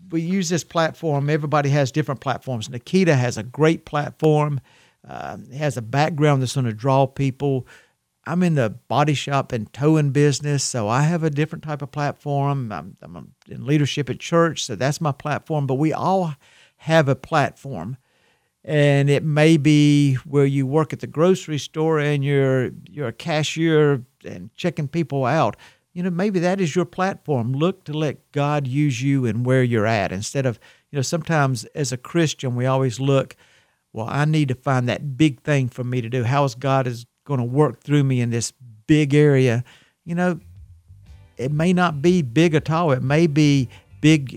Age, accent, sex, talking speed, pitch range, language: 50-69, American, male, 190 wpm, 125-155 Hz, English